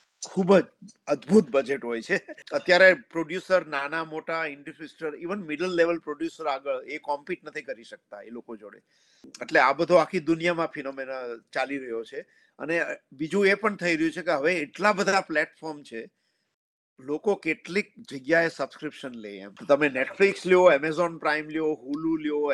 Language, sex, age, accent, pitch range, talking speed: Gujarati, male, 50-69, native, 140-180 Hz, 70 wpm